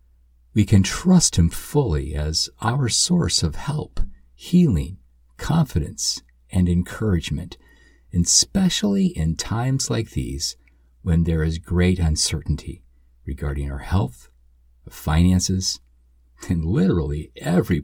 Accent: American